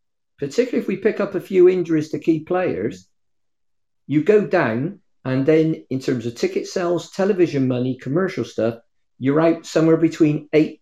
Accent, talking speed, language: British, 165 wpm, English